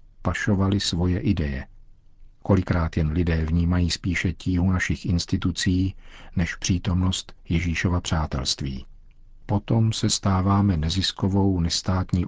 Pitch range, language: 80-110 Hz, Czech